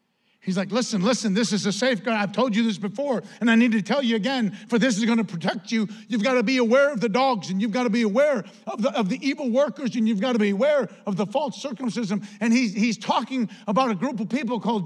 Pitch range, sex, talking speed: 195-240 Hz, male, 270 wpm